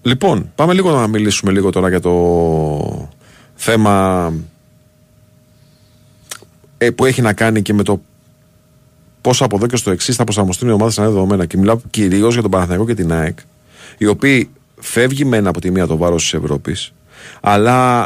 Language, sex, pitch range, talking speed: Greek, male, 100-125 Hz, 165 wpm